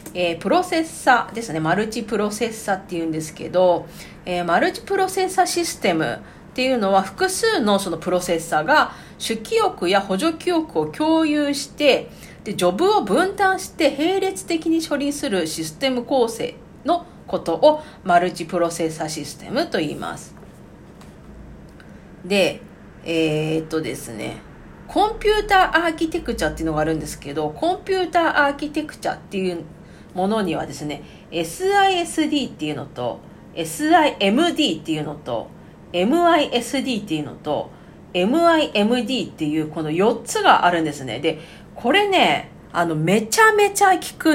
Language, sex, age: Japanese, female, 50-69